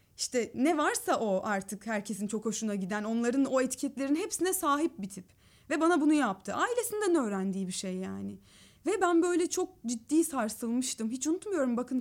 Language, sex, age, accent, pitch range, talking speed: Turkish, female, 30-49, native, 225-295 Hz, 170 wpm